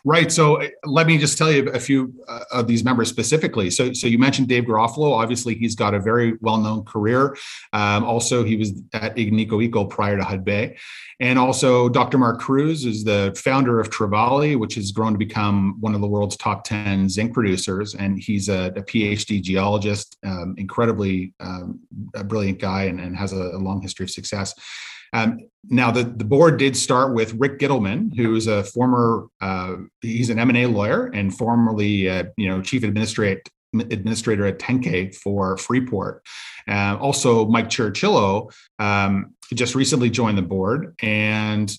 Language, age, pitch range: English, 30-49, 100-120 Hz